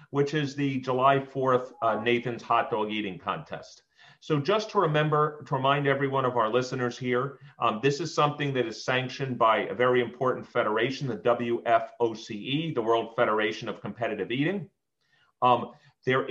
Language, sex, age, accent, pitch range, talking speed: English, male, 40-59, American, 125-150 Hz, 165 wpm